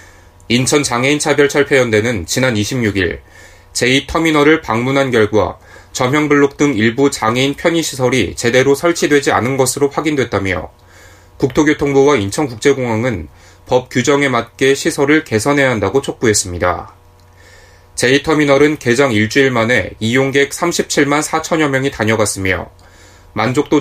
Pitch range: 100-145 Hz